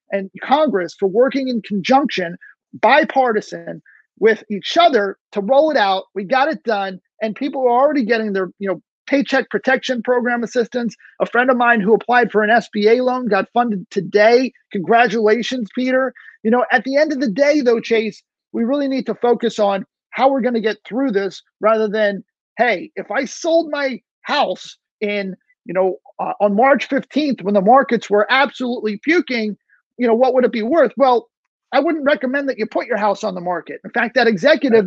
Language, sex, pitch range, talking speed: English, male, 210-265 Hz, 195 wpm